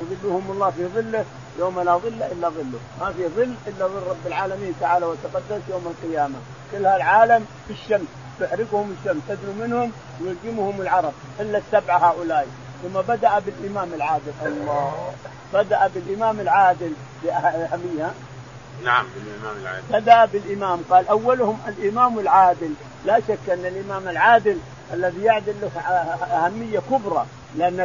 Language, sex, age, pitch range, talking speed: Arabic, male, 50-69, 175-230 Hz, 135 wpm